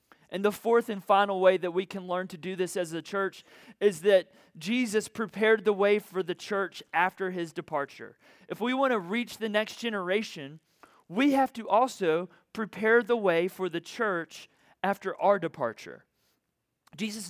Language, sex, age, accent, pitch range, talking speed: English, male, 40-59, American, 175-210 Hz, 175 wpm